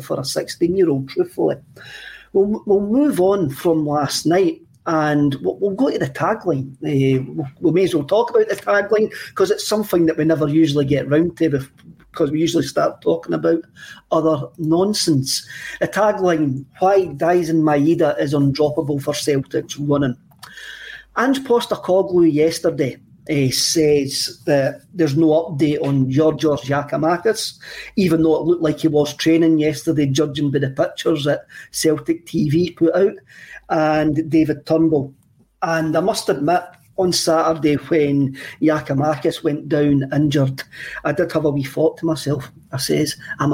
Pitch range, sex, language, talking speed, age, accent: 145-170 Hz, male, English, 150 wpm, 40-59, British